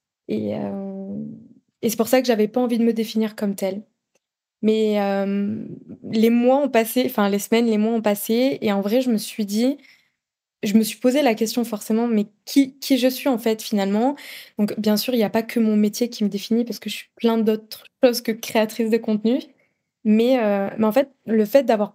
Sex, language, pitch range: female, French, 210-245 Hz